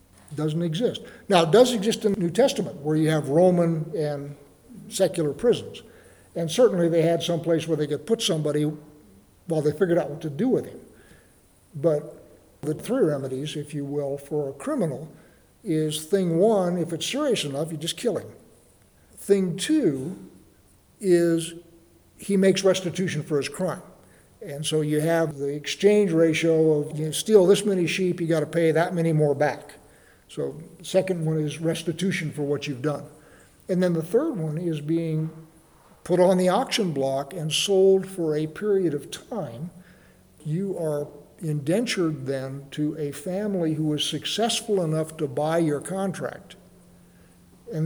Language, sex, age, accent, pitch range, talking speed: English, male, 60-79, American, 150-185 Hz, 165 wpm